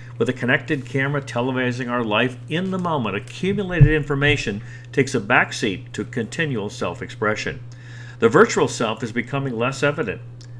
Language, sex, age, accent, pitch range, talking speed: English, male, 50-69, American, 120-145 Hz, 140 wpm